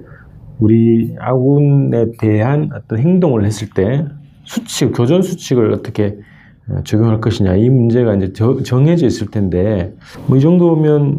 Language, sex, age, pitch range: Korean, male, 40-59, 105-140 Hz